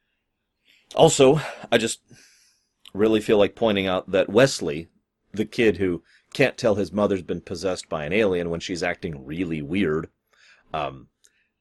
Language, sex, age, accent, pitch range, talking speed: English, male, 30-49, American, 95-155 Hz, 145 wpm